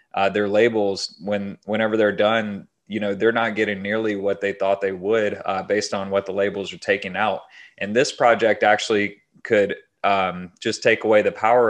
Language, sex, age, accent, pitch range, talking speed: English, male, 30-49, American, 100-115 Hz, 195 wpm